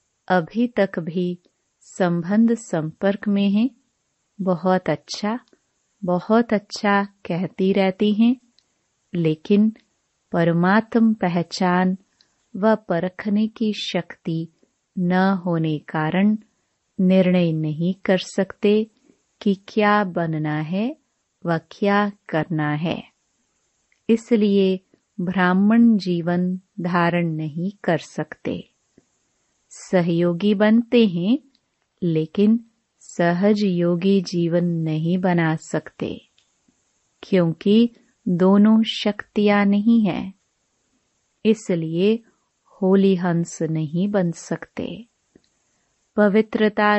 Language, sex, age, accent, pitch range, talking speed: Hindi, female, 30-49, native, 175-215 Hz, 80 wpm